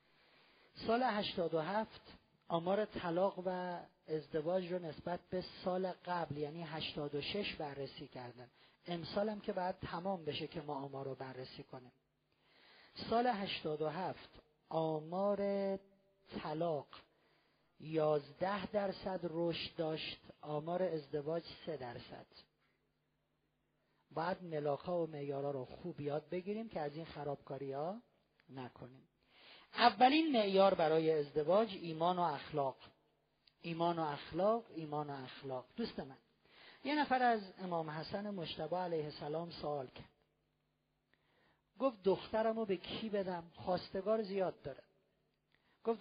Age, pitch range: 40-59, 150-195 Hz